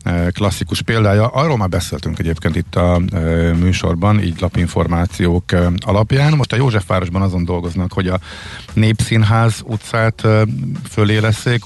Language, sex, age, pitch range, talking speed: Hungarian, male, 50-69, 90-110 Hz, 120 wpm